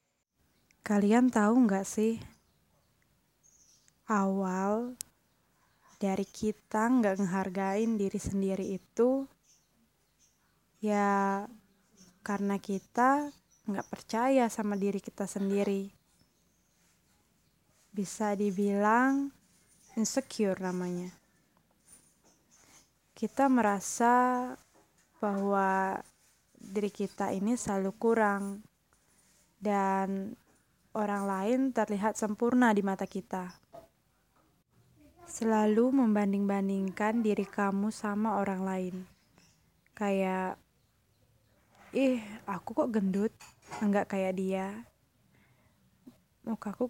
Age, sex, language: 20-39, female, Indonesian